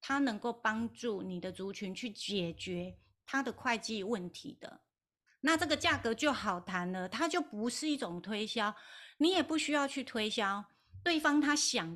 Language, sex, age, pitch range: Chinese, female, 30-49, 190-250 Hz